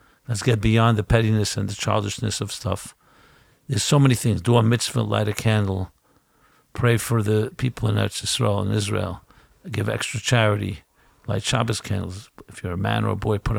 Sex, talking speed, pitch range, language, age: male, 190 wpm, 105-135 Hz, English, 50-69